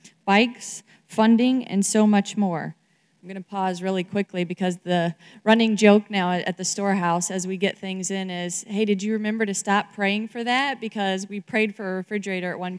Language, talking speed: English, 200 wpm